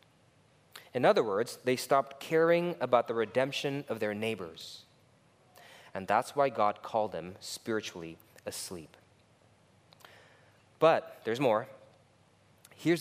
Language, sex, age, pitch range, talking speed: English, male, 20-39, 120-165 Hz, 110 wpm